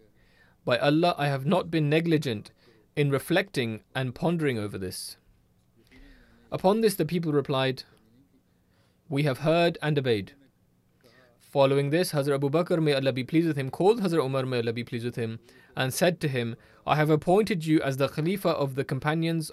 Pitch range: 130-165 Hz